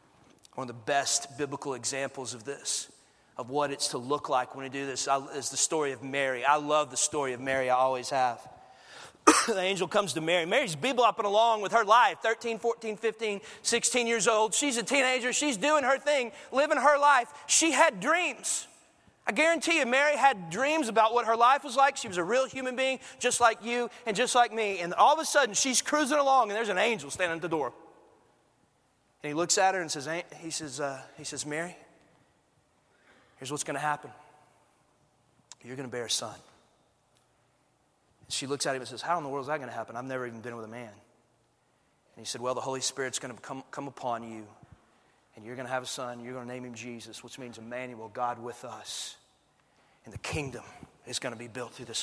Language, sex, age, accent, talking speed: English, male, 30-49, American, 215 wpm